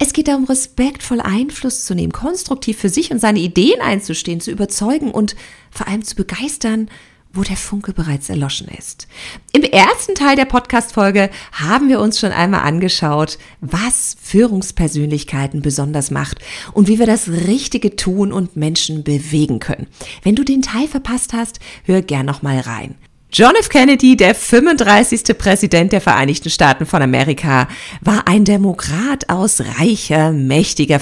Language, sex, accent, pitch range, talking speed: German, female, German, 150-230 Hz, 155 wpm